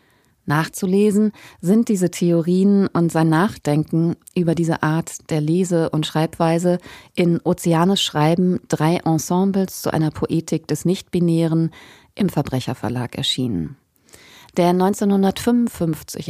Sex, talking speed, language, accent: female, 110 wpm, German, German